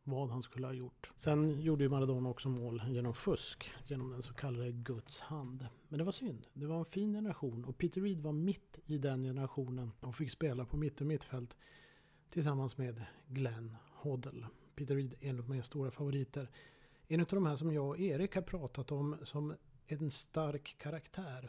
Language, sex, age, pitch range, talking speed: Swedish, male, 40-59, 130-155 Hz, 200 wpm